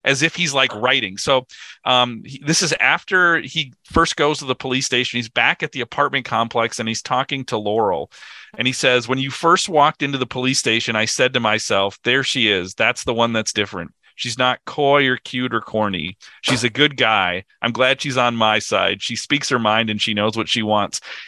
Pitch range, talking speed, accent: 120-160 Hz, 225 wpm, American